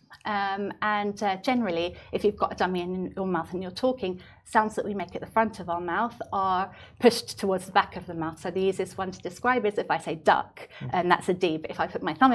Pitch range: 170-200 Hz